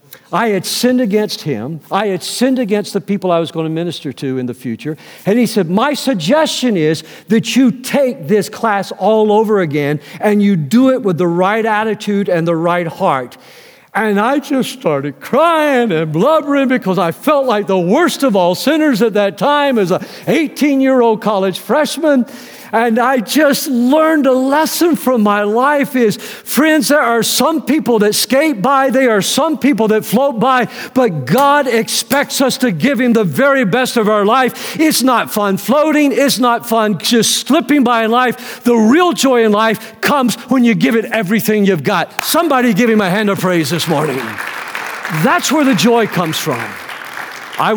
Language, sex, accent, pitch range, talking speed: English, male, American, 190-255 Hz, 185 wpm